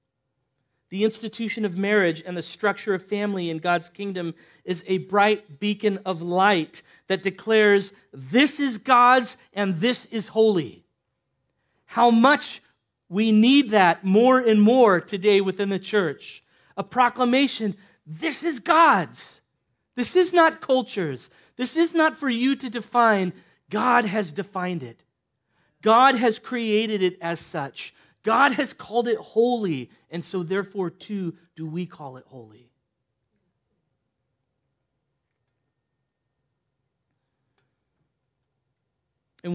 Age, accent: 40-59, American